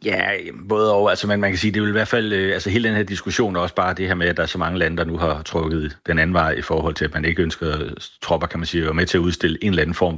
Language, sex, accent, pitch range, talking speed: Danish, male, native, 80-90 Hz, 310 wpm